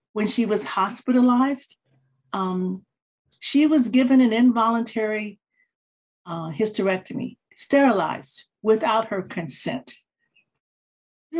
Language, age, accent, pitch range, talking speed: English, 50-69, American, 180-235 Hz, 90 wpm